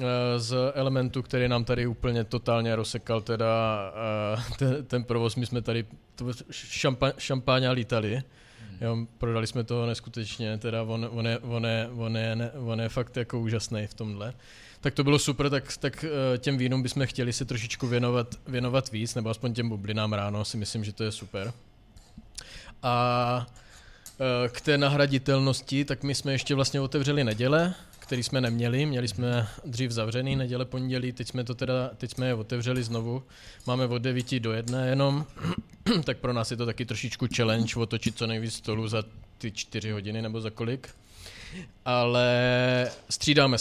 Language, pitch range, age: Czech, 115-130 Hz, 20-39